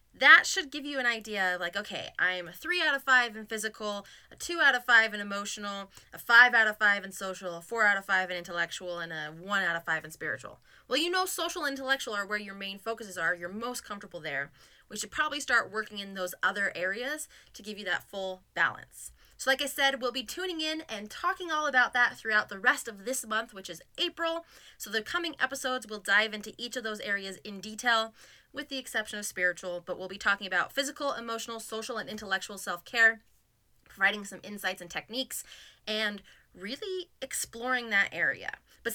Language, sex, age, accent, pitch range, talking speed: English, female, 20-39, American, 195-260 Hz, 215 wpm